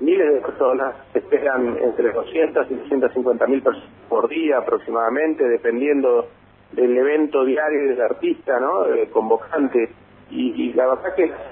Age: 40-59